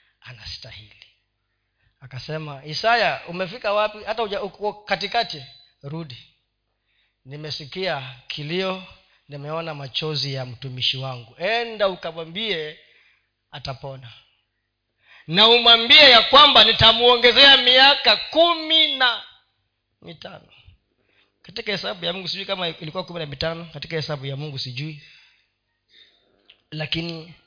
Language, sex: Swahili, male